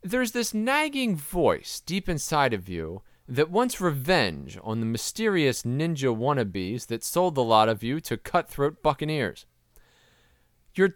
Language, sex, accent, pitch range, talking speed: English, male, American, 115-175 Hz, 140 wpm